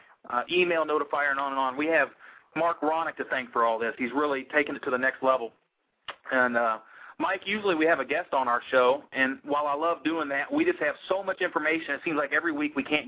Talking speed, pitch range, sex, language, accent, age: 250 wpm, 135-165 Hz, male, English, American, 40-59